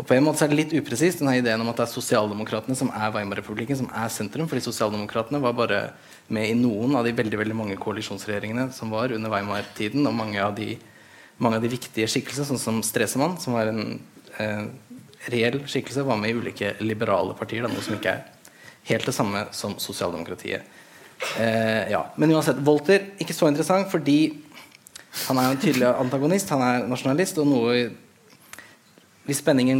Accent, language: Norwegian, English